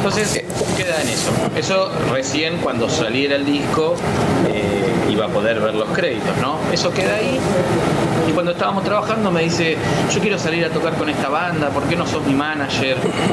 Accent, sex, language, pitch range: Argentinian, male, Spanish, 130-165 Hz